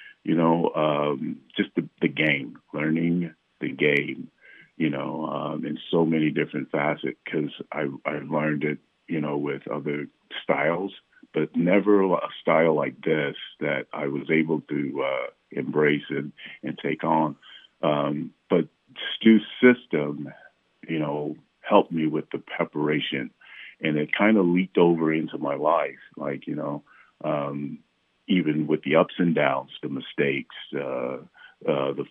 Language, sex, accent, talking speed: English, male, American, 150 wpm